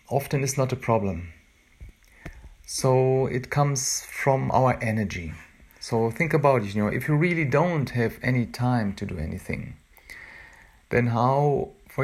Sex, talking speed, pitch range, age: male, 150 wpm, 105-135 Hz, 50-69